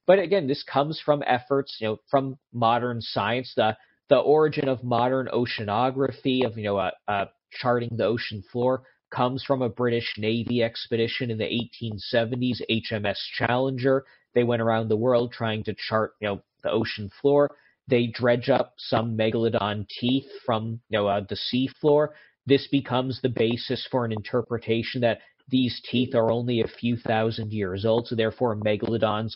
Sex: male